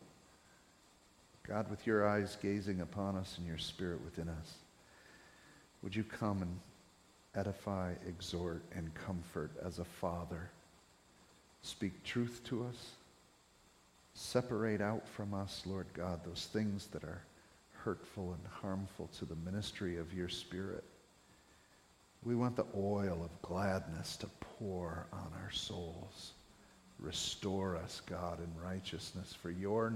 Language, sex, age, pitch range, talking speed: English, male, 50-69, 85-105 Hz, 130 wpm